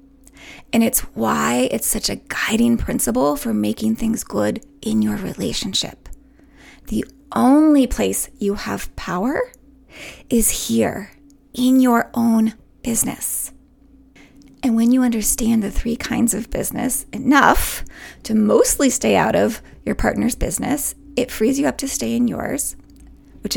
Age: 20-39